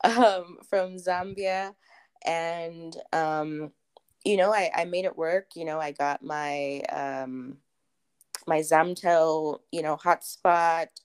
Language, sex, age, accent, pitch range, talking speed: English, female, 20-39, American, 145-170 Hz, 125 wpm